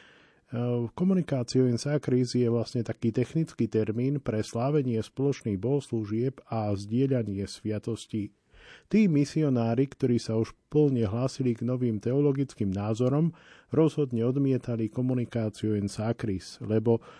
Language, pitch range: Slovak, 115-135 Hz